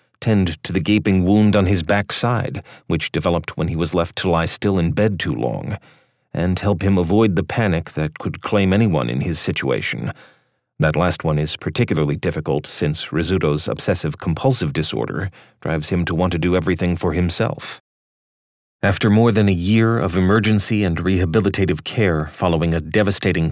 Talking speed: 170 wpm